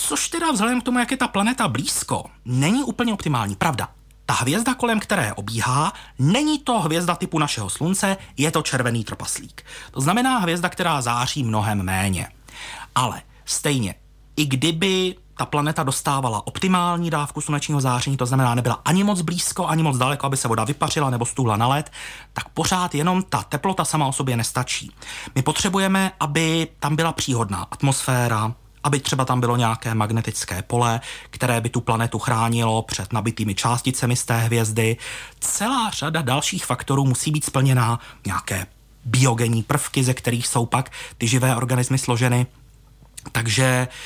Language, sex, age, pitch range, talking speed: Czech, male, 30-49, 120-165 Hz, 160 wpm